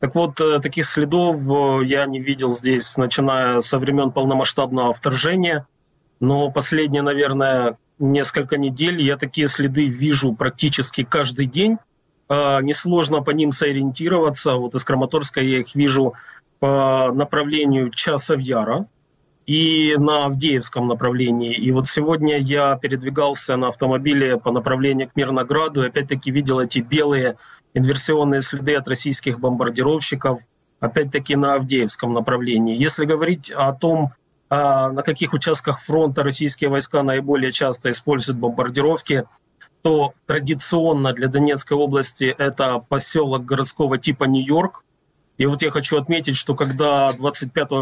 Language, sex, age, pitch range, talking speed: Ukrainian, male, 20-39, 130-150 Hz, 125 wpm